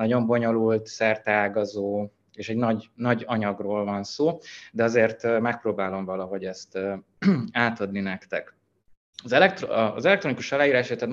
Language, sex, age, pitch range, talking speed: Hungarian, male, 20-39, 100-115 Hz, 125 wpm